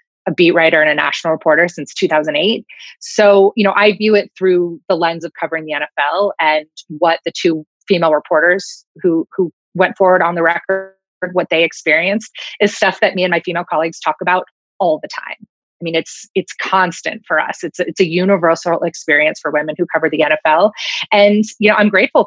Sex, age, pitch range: female, 30-49, 160-205 Hz